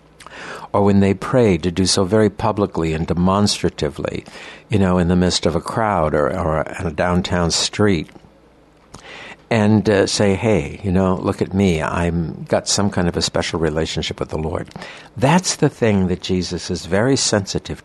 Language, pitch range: English, 90-110 Hz